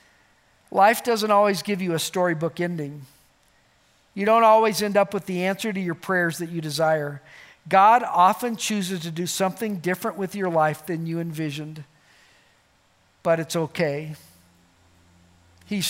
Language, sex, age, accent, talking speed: English, male, 50-69, American, 145 wpm